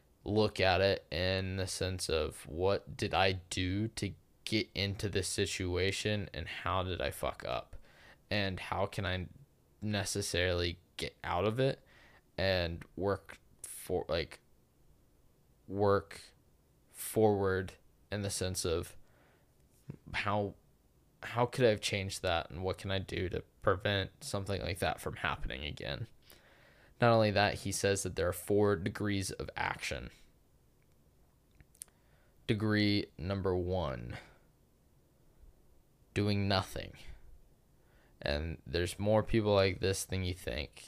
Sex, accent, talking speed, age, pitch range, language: male, American, 130 wpm, 20-39, 90-100 Hz, English